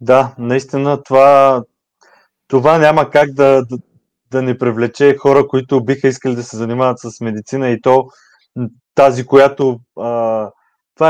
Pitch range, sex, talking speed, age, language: 120-140 Hz, male, 120 wpm, 20-39, Bulgarian